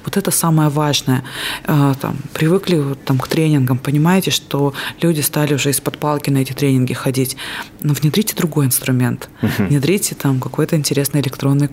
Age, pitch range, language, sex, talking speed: 20-39, 140-160 Hz, Russian, female, 135 wpm